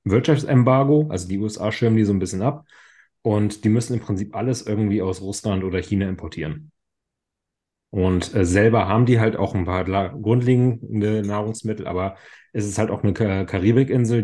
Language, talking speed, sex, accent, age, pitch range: German, 165 wpm, male, German, 30-49, 95-115 Hz